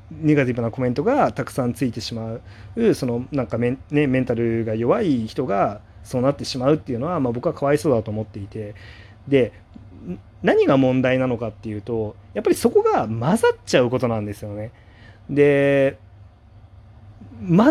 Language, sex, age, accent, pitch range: Japanese, male, 30-49, native, 105-140 Hz